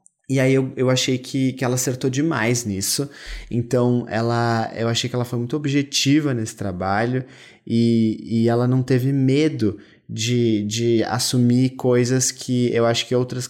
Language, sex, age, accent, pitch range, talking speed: Portuguese, male, 20-39, Brazilian, 110-130 Hz, 160 wpm